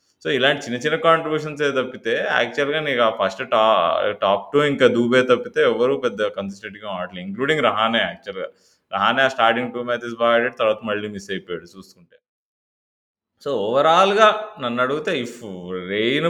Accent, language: native, Telugu